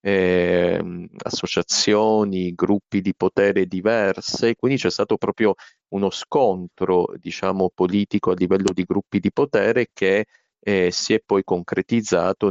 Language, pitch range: Italian, 90-105 Hz